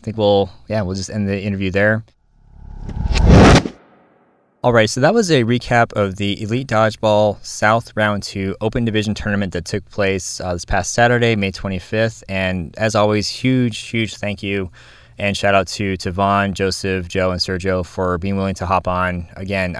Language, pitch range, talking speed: English, 90-105 Hz, 180 wpm